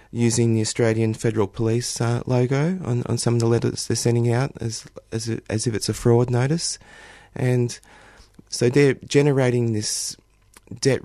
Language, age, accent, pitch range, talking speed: English, 30-49, Australian, 110-125 Hz, 160 wpm